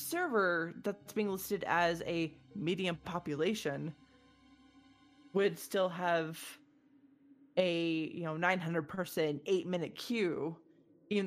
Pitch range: 165-225 Hz